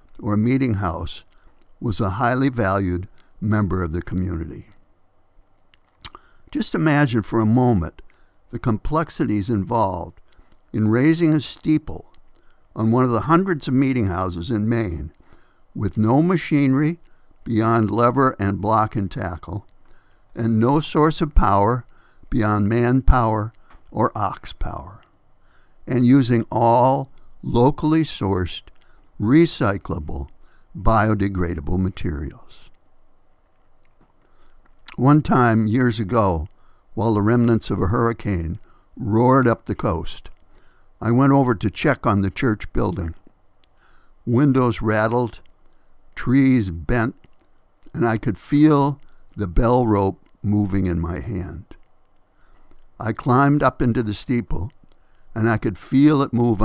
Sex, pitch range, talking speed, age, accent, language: male, 95-125 Hz, 115 wpm, 60-79, American, English